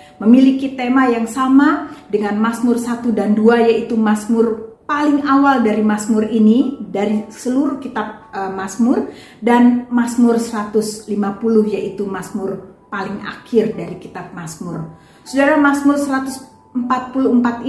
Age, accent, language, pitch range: 40-59, native, Indonesian, 205-255 Hz